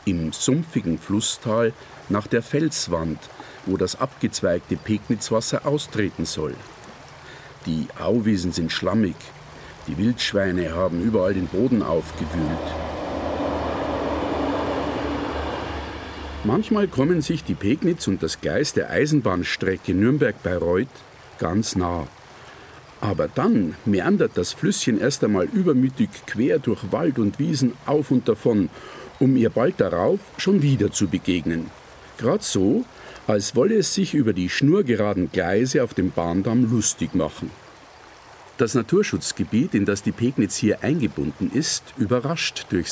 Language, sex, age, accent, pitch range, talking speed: German, male, 50-69, German, 90-135 Hz, 120 wpm